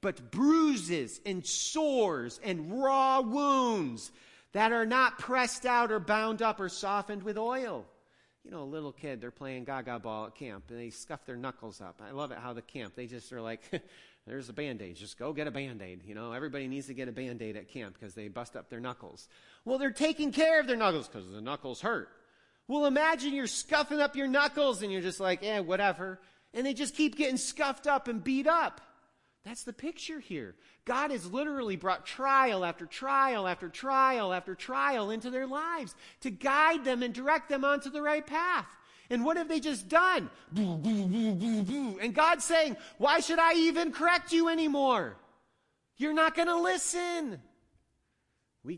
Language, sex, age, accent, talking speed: English, male, 40-59, American, 190 wpm